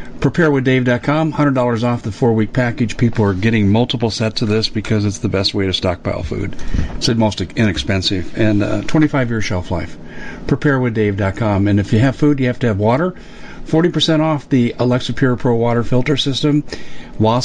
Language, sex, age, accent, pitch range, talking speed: English, male, 50-69, American, 105-145 Hz, 175 wpm